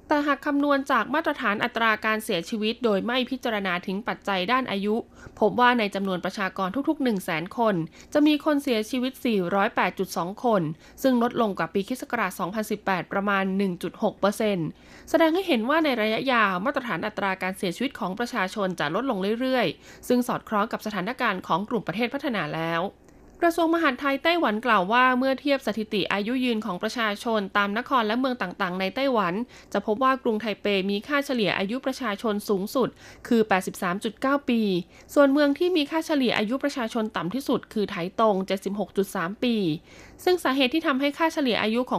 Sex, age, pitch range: female, 20-39, 195-255 Hz